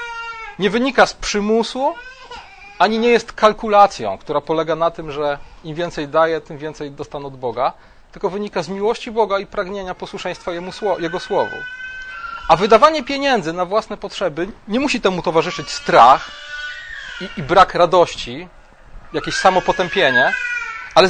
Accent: native